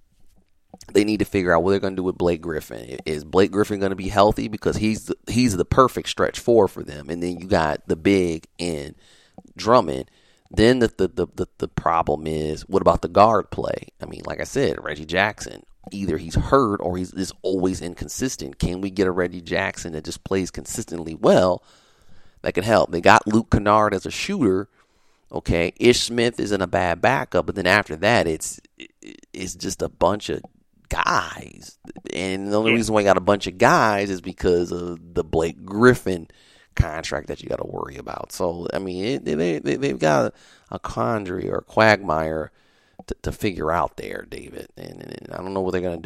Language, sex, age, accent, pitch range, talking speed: English, male, 30-49, American, 85-100 Hz, 200 wpm